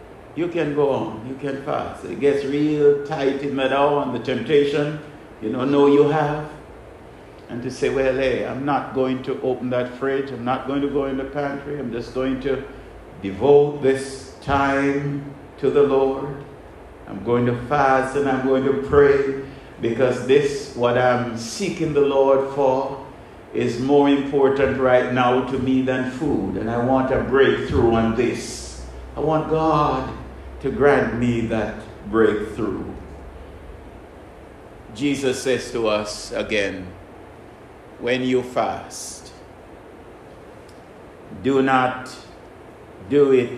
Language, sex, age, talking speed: English, male, 60-79, 145 wpm